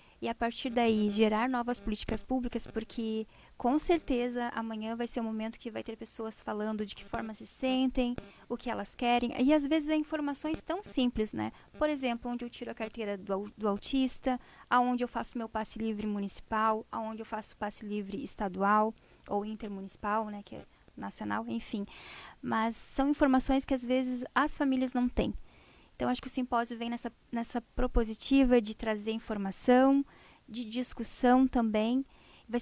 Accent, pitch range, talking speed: Brazilian, 220-255 Hz, 175 wpm